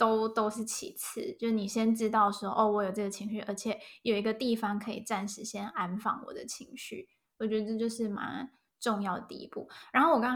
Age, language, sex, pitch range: 10-29, Chinese, female, 215-260 Hz